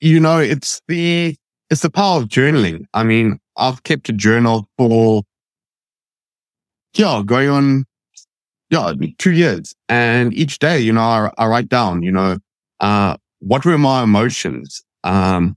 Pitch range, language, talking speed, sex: 105-145 Hz, English, 150 wpm, male